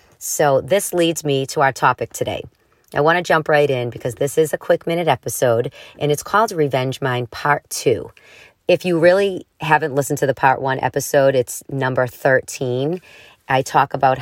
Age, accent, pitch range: 40-59, American, 130-160 Hz